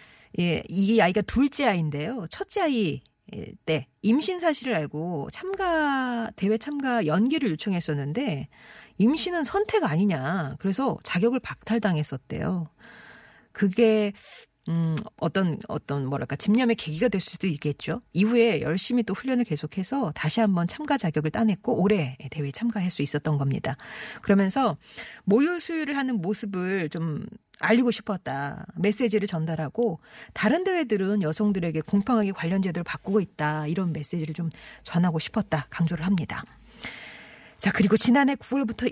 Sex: female